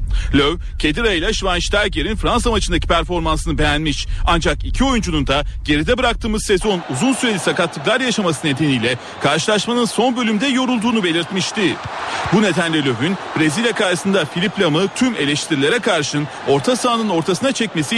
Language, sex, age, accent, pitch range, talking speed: Turkish, male, 40-59, native, 160-220 Hz, 130 wpm